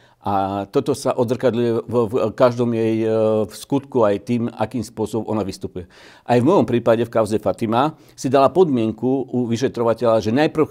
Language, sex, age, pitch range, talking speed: Slovak, male, 50-69, 110-140 Hz, 155 wpm